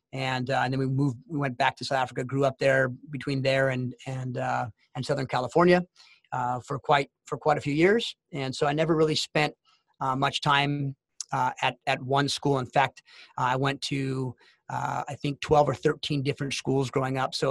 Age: 30-49